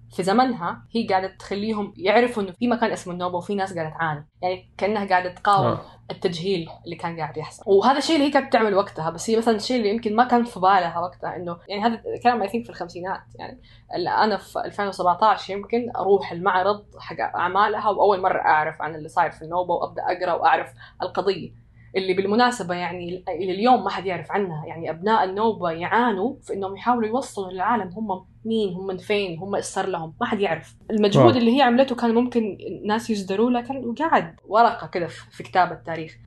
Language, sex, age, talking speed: Arabic, female, 20-39, 195 wpm